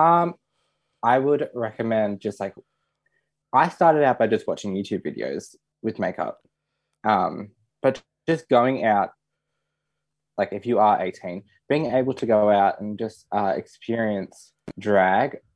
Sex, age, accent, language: male, 20-39, Australian, English